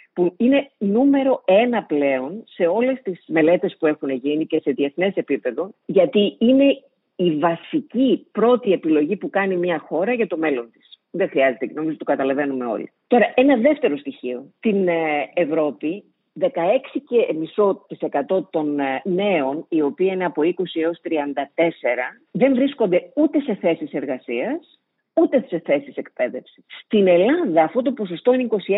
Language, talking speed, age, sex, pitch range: Greek, 140 wpm, 50-69, female, 160-245 Hz